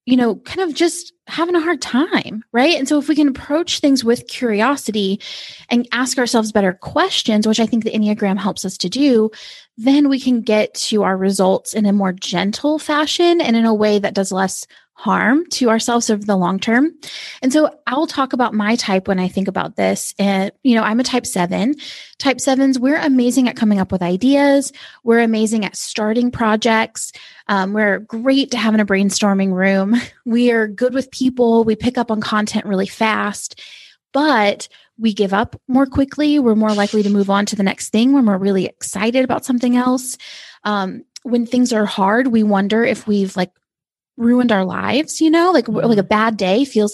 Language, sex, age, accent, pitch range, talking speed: English, female, 20-39, American, 205-260 Hz, 200 wpm